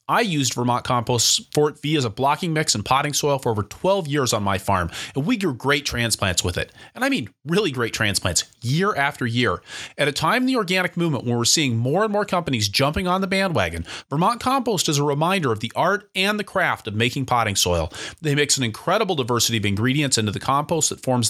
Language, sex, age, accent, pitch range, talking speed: English, male, 30-49, American, 120-170 Hz, 230 wpm